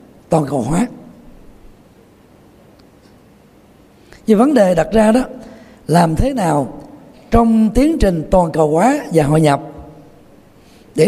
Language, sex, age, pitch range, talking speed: Vietnamese, male, 60-79, 165-245 Hz, 120 wpm